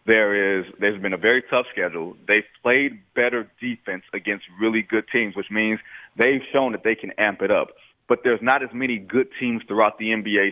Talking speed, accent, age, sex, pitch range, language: 200 wpm, American, 30-49, male, 110-145 Hz, English